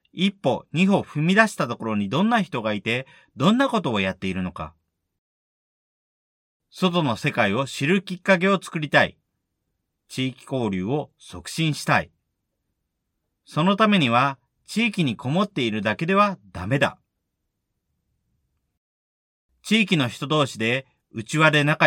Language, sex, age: Japanese, male, 40-59